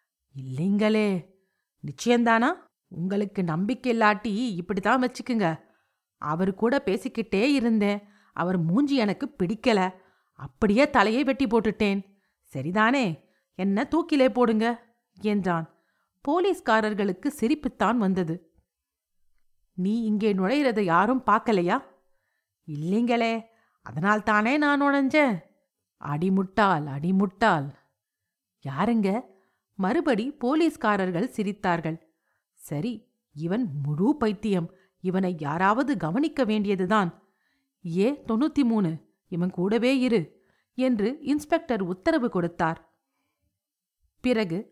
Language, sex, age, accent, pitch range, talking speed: Tamil, female, 50-69, native, 185-250 Hz, 85 wpm